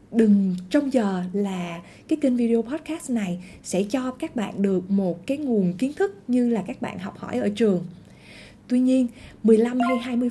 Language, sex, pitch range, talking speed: Vietnamese, female, 190-250 Hz, 185 wpm